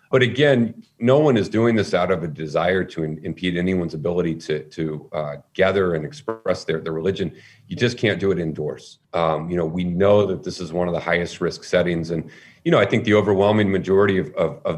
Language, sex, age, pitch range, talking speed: English, male, 40-59, 85-100 Hz, 225 wpm